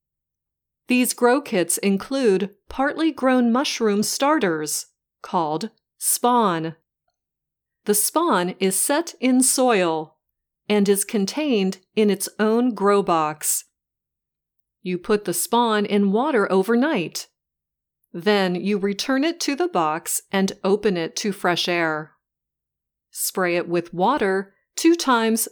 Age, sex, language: 40-59, female, English